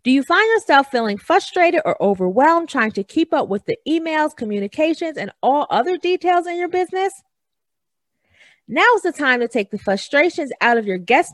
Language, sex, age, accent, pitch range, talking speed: English, female, 30-49, American, 225-350 Hz, 185 wpm